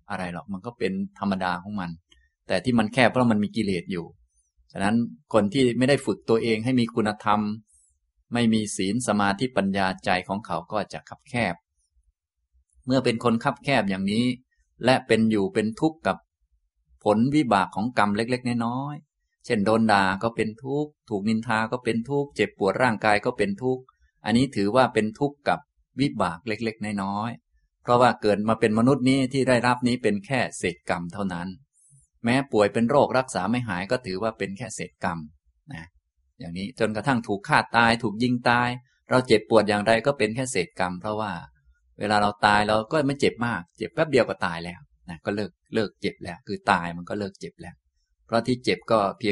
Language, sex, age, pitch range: Thai, male, 20-39, 95-120 Hz